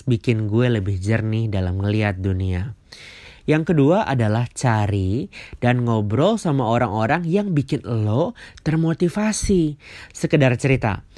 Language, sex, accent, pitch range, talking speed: Indonesian, male, native, 105-145 Hz, 115 wpm